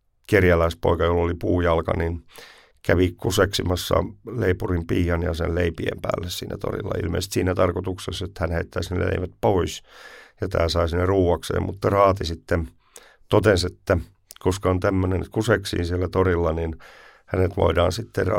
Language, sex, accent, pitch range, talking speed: Finnish, male, native, 85-100 Hz, 145 wpm